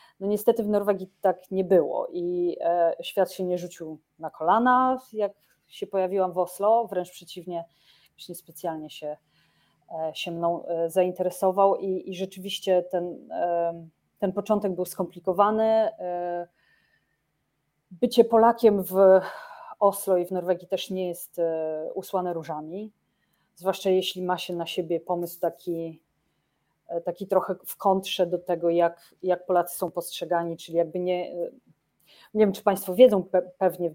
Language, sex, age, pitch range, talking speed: Polish, female, 30-49, 170-195 Hz, 135 wpm